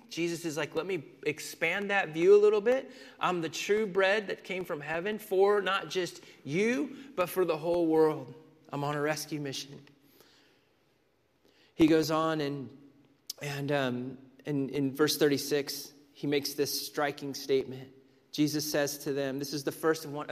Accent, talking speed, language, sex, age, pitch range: American, 170 wpm, English, male, 30-49, 145-180 Hz